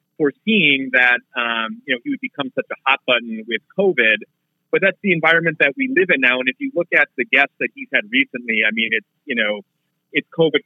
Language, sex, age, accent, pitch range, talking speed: English, male, 30-49, American, 120-160 Hz, 230 wpm